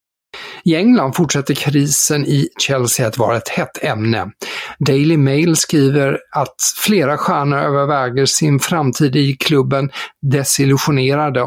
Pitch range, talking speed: 125-150 Hz, 120 wpm